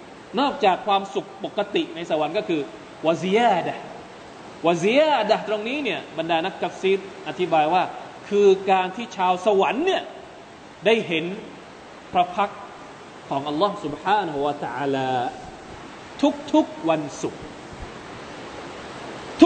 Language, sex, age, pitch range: Thai, male, 20-39, 175-220 Hz